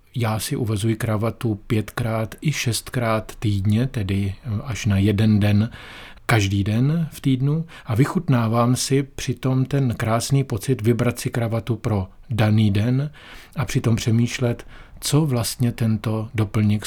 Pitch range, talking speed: 105-130 Hz, 130 wpm